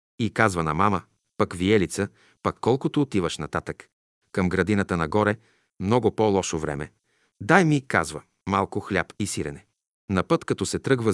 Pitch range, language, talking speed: 90-120 Hz, Bulgarian, 150 wpm